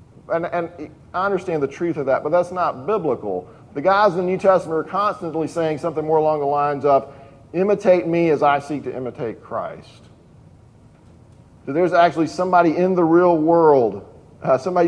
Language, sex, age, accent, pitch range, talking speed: English, male, 40-59, American, 140-175 Hz, 180 wpm